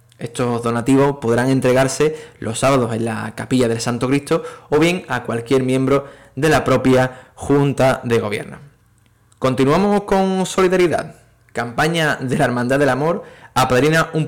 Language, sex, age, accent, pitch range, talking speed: Spanish, male, 20-39, Spanish, 120-150 Hz, 145 wpm